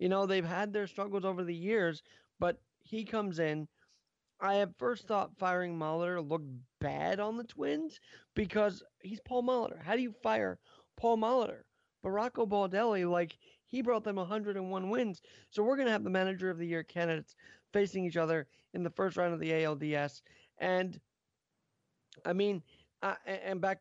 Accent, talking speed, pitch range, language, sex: American, 170 wpm, 170-210 Hz, English, male